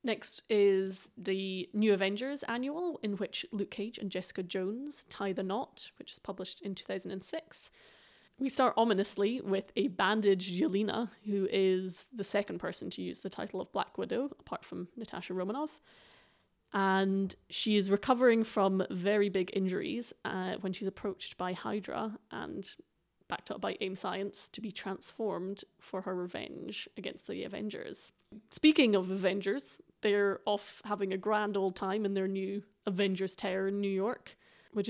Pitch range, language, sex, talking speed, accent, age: 195-235 Hz, English, female, 160 wpm, British, 20-39